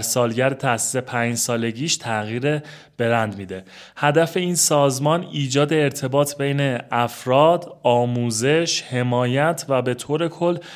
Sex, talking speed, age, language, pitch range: male, 110 wpm, 30-49, Persian, 120-150 Hz